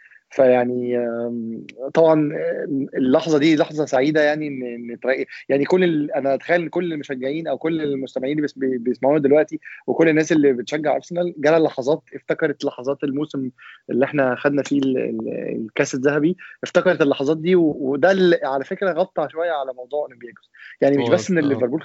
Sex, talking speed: male, 145 wpm